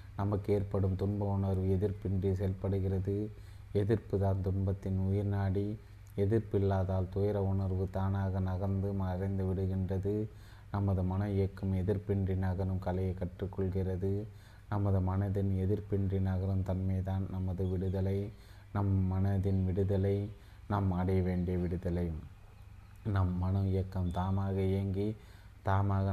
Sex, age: male, 20-39